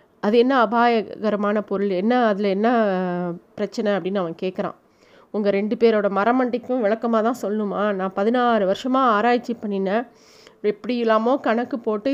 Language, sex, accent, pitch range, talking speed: Tamil, female, native, 200-255 Hz, 135 wpm